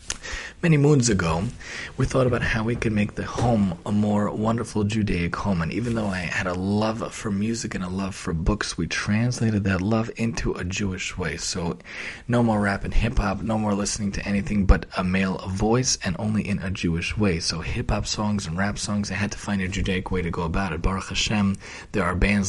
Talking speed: 225 wpm